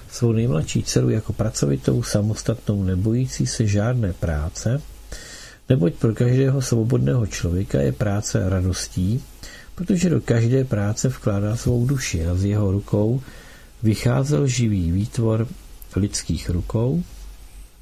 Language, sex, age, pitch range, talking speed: Czech, male, 50-69, 95-125 Hz, 115 wpm